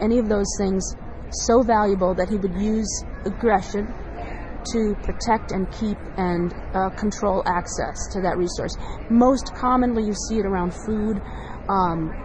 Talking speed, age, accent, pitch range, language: 145 wpm, 30-49, American, 185-215 Hz, English